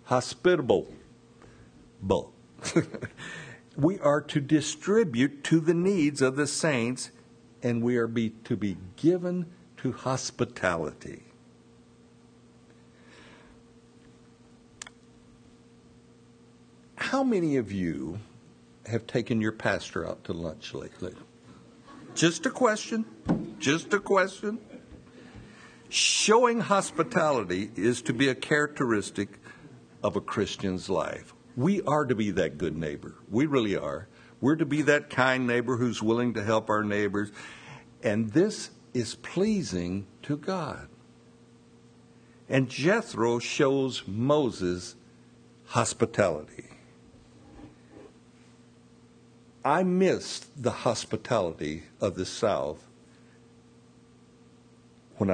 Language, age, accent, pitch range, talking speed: English, 60-79, American, 115-150 Hz, 95 wpm